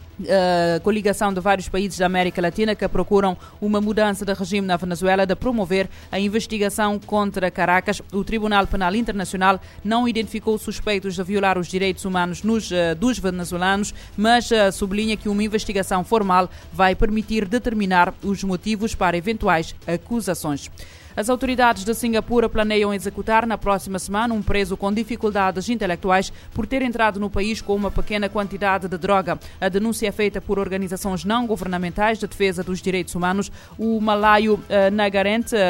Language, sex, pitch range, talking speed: Portuguese, female, 185-215 Hz, 155 wpm